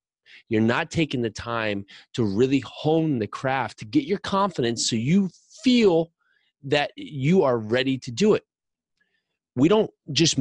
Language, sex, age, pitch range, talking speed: English, male, 30-49, 110-150 Hz, 155 wpm